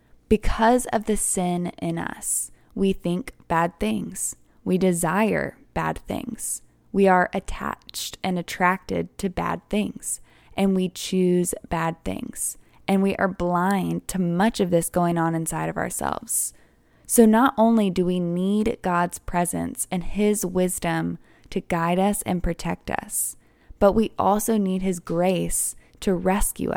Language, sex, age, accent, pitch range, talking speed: English, female, 20-39, American, 165-195 Hz, 145 wpm